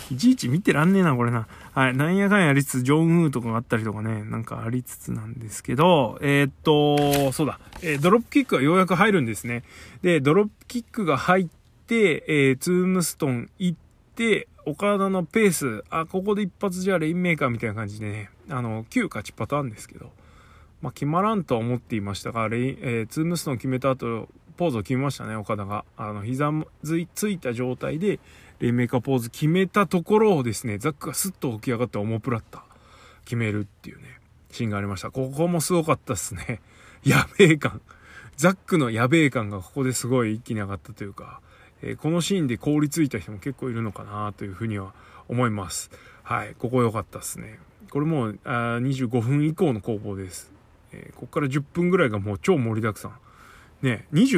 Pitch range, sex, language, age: 110-165 Hz, male, Japanese, 20-39